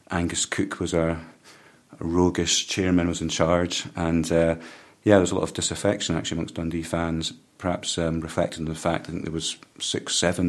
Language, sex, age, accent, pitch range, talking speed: English, male, 40-59, British, 85-90 Hz, 195 wpm